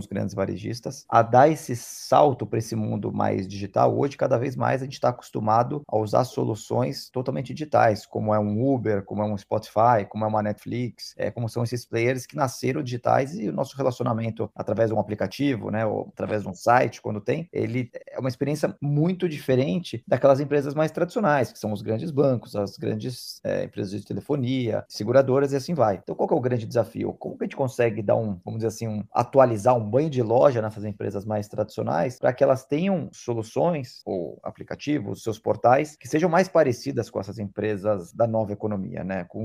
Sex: male